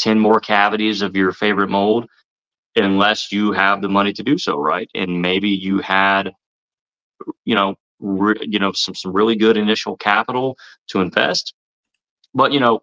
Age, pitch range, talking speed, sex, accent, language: 30-49, 100-115 Hz, 170 wpm, male, American, English